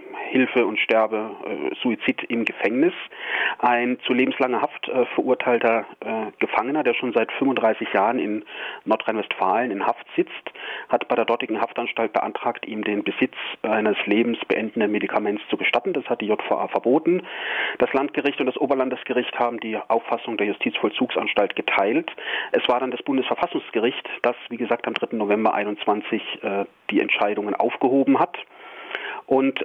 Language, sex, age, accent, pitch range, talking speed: German, male, 40-59, German, 115-135 Hz, 150 wpm